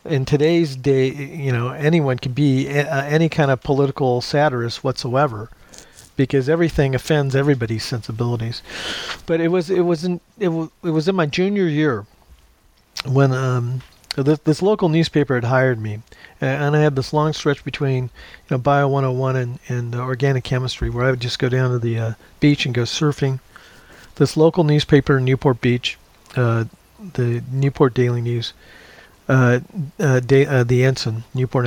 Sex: male